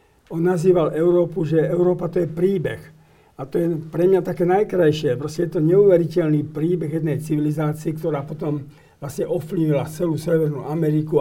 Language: Slovak